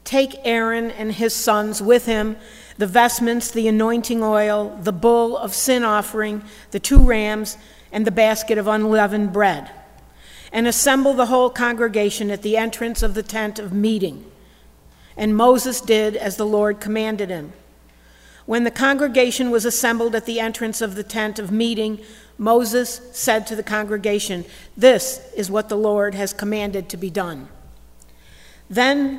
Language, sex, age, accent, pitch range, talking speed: English, female, 50-69, American, 205-235 Hz, 155 wpm